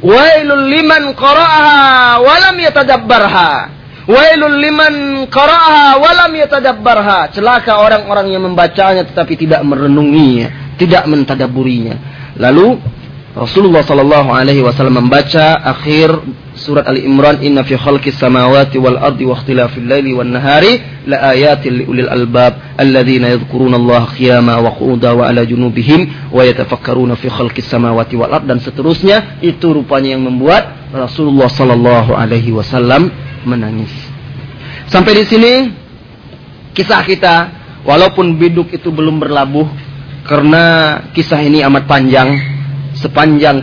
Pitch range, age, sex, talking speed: 130-150 Hz, 30-49, male, 85 wpm